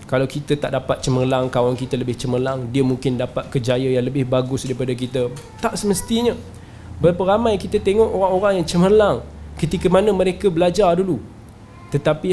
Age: 20-39